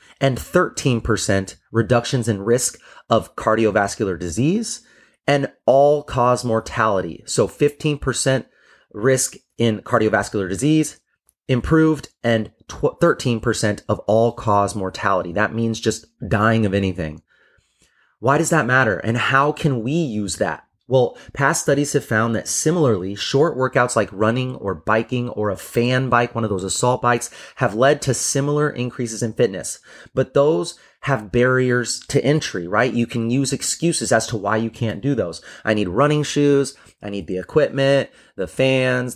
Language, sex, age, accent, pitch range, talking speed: English, male, 30-49, American, 110-140 Hz, 145 wpm